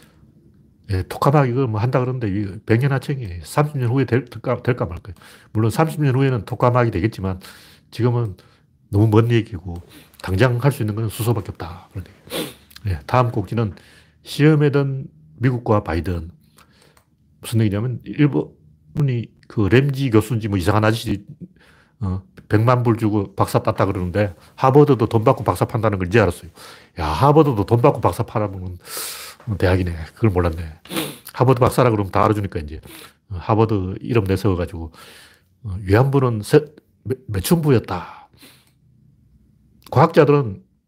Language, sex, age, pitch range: Korean, male, 40-59, 95-135 Hz